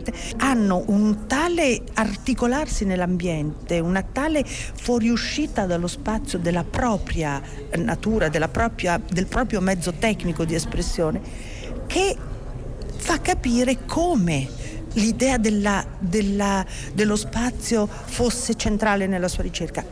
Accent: native